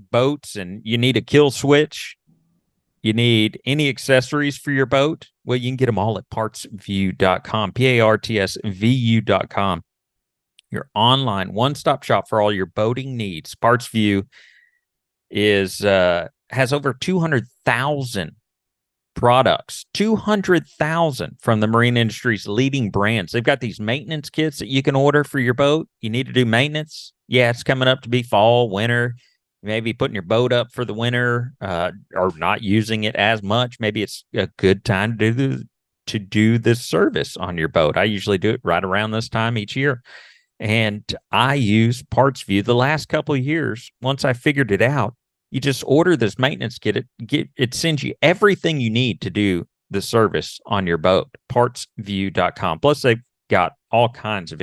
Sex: male